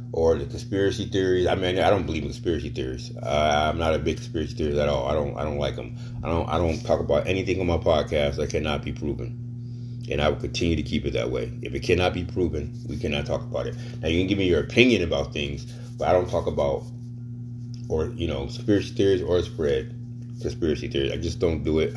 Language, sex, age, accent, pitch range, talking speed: English, male, 30-49, American, 90-120 Hz, 240 wpm